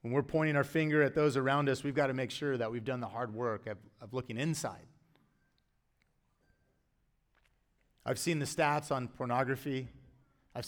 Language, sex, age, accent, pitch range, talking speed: English, male, 30-49, American, 135-195 Hz, 175 wpm